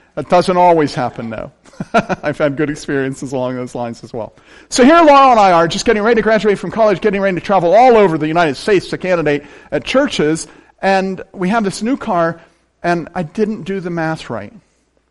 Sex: male